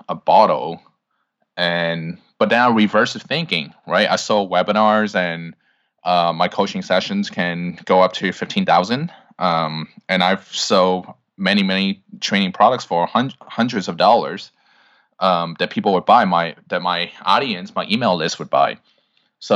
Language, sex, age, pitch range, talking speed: English, male, 20-39, 90-115 Hz, 155 wpm